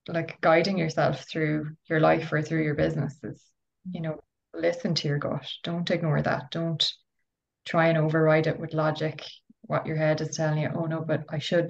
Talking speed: 195 wpm